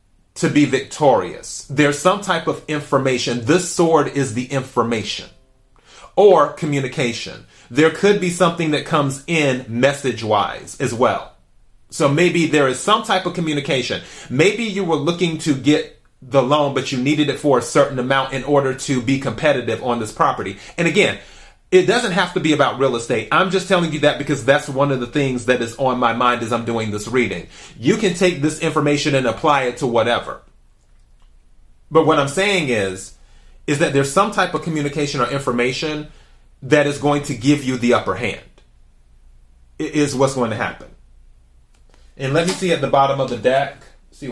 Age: 30-49